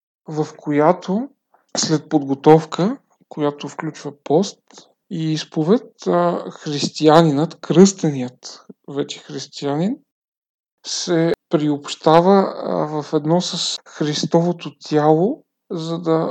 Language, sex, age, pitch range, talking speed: Bulgarian, male, 40-59, 150-180 Hz, 80 wpm